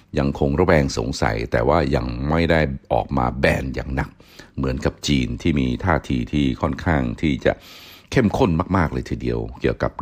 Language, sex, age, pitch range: Thai, male, 60-79, 65-85 Hz